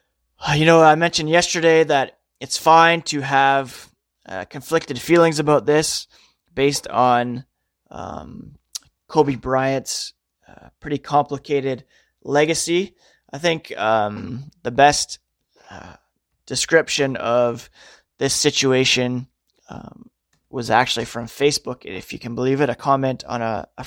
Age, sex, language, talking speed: 20-39, male, English, 125 wpm